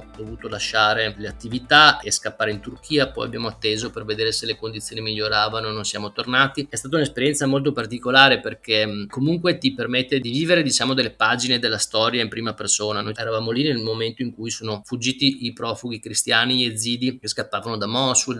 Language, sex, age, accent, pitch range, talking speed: Italian, male, 20-39, native, 110-135 Hz, 190 wpm